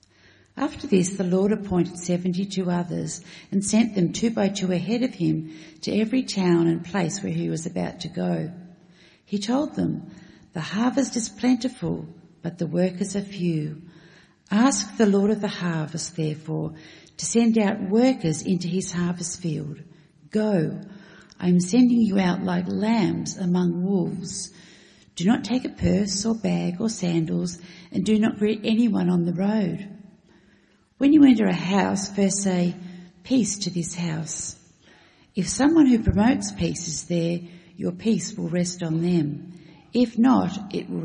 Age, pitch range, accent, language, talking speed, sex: 50-69, 170-200 Hz, Australian, English, 160 wpm, female